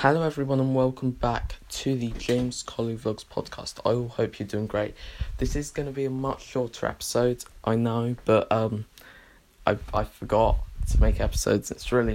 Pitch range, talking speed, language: 110-130 Hz, 185 wpm, English